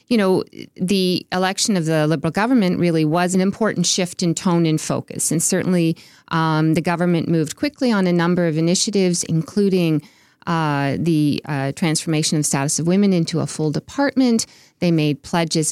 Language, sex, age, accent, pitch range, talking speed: English, female, 40-59, American, 155-190 Hz, 175 wpm